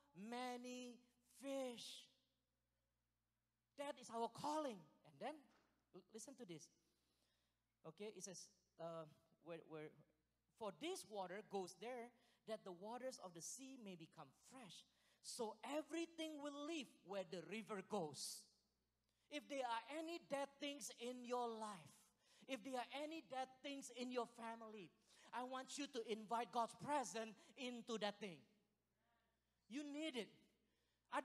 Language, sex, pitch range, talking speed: English, male, 180-250 Hz, 140 wpm